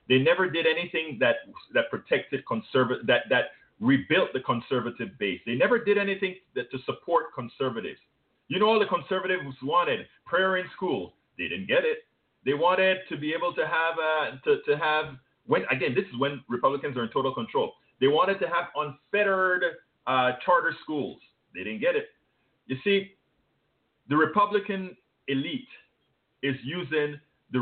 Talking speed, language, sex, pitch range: 165 wpm, English, male, 140-210 Hz